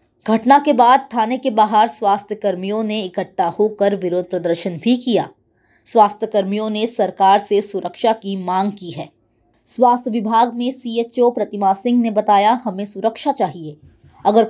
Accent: native